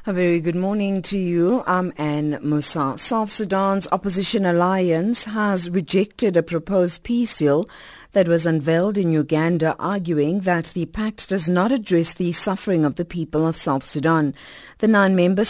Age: 50-69